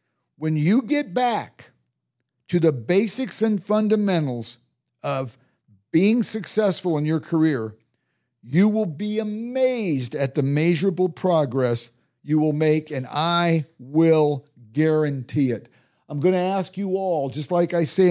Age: 50-69